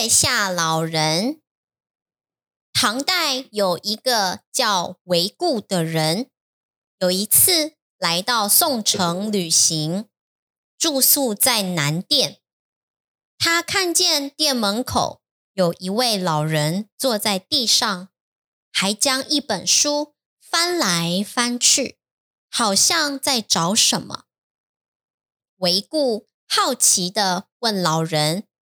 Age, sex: 10-29, male